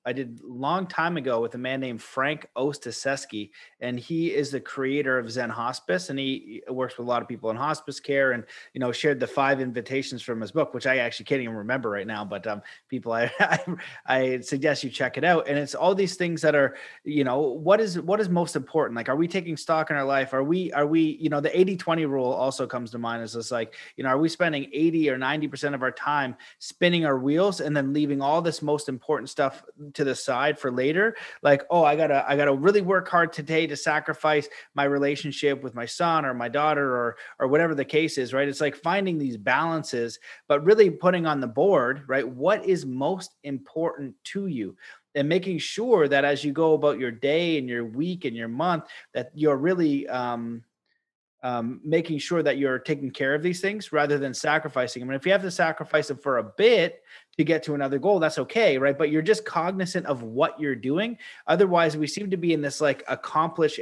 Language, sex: English, male